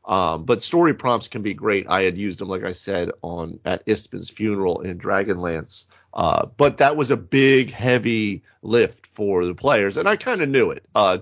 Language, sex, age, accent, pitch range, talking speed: English, male, 40-59, American, 95-135 Hz, 205 wpm